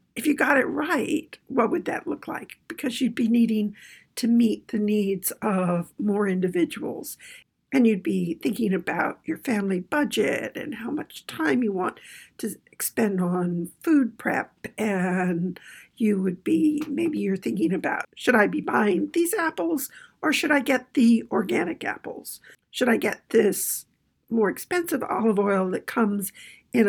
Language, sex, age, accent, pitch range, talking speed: English, female, 50-69, American, 190-290 Hz, 160 wpm